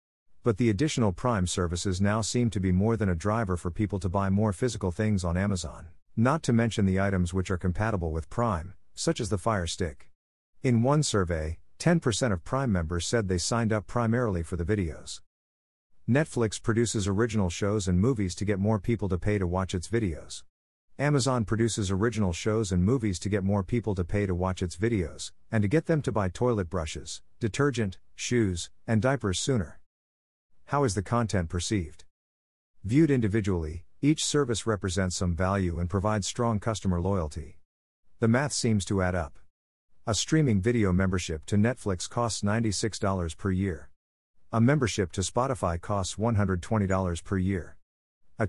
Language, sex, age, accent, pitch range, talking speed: English, male, 50-69, American, 90-115 Hz, 170 wpm